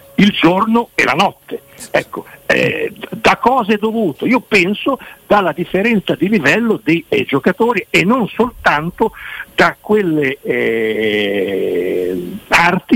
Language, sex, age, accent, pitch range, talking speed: Italian, male, 60-79, native, 145-205 Hz, 120 wpm